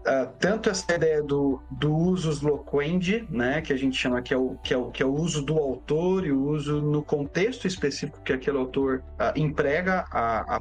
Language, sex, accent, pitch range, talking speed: Portuguese, male, Brazilian, 135-170 Hz, 210 wpm